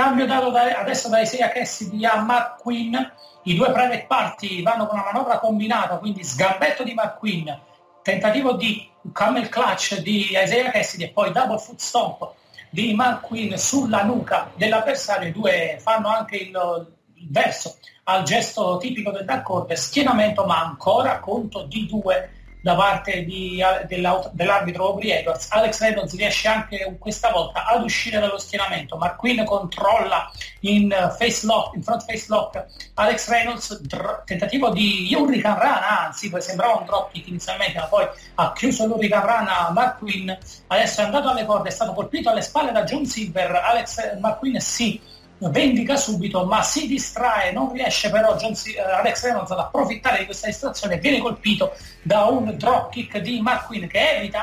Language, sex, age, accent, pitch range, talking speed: Italian, male, 40-59, native, 190-240 Hz, 165 wpm